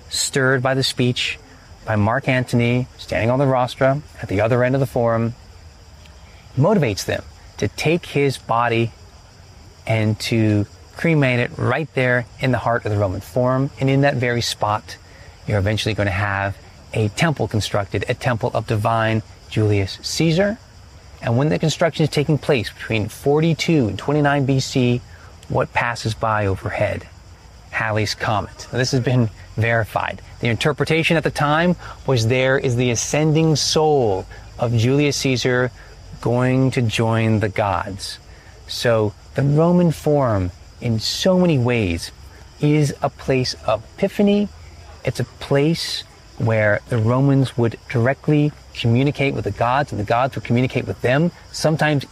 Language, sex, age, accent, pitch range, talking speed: English, male, 30-49, American, 105-140 Hz, 150 wpm